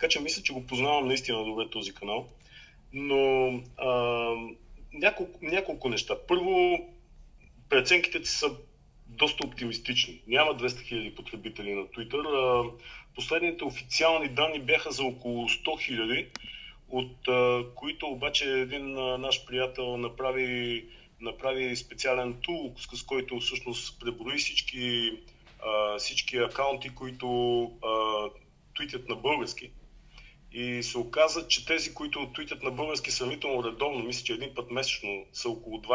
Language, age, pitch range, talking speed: Bulgarian, 40-59, 120-150 Hz, 130 wpm